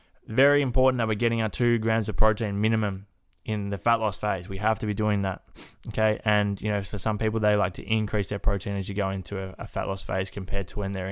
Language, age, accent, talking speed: English, 20-39, Australian, 260 wpm